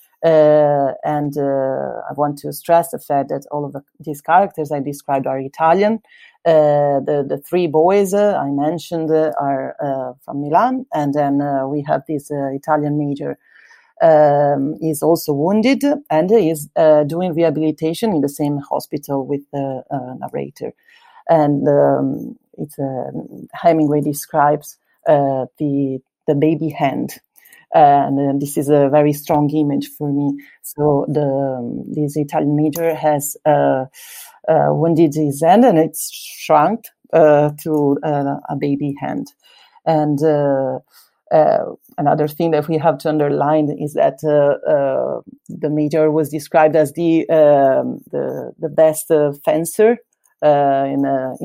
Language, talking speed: English, 150 wpm